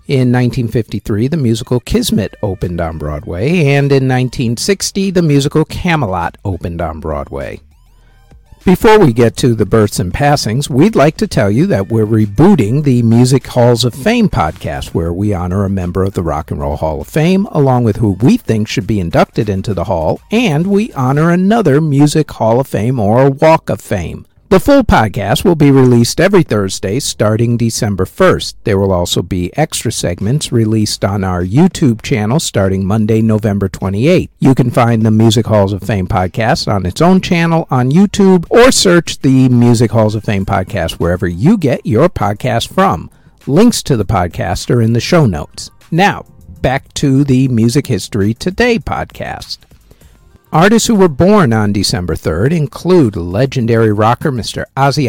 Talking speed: 175 wpm